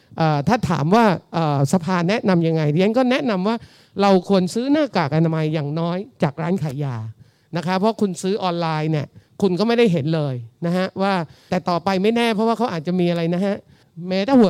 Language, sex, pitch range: Thai, male, 155-205 Hz